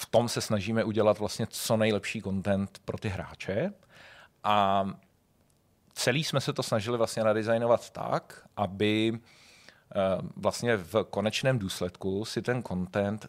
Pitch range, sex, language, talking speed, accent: 95-115 Hz, male, Czech, 125 wpm, native